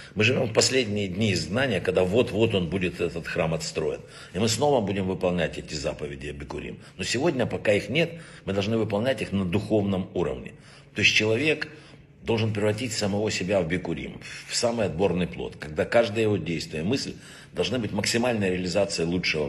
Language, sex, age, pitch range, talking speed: Russian, male, 60-79, 90-130 Hz, 180 wpm